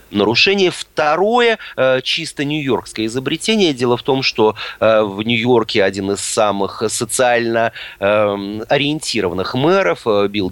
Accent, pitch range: native, 100-160 Hz